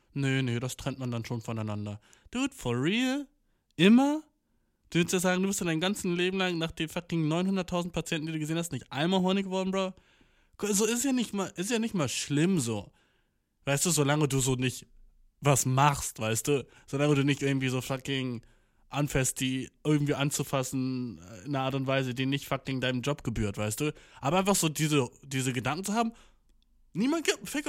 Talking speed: 200 wpm